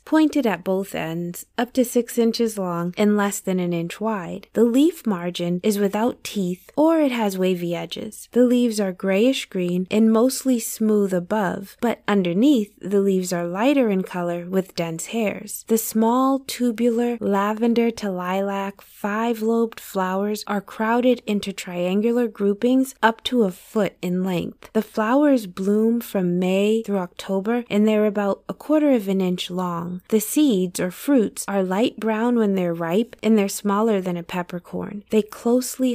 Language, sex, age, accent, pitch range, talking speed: English, female, 20-39, American, 190-235 Hz, 165 wpm